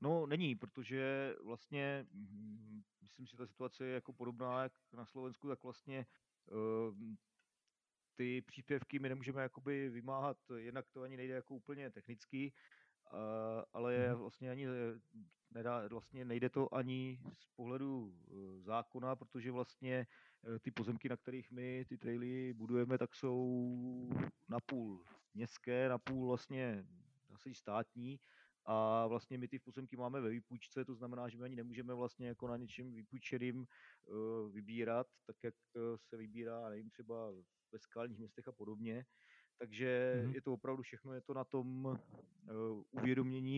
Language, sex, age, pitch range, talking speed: Slovak, male, 40-59, 115-130 Hz, 135 wpm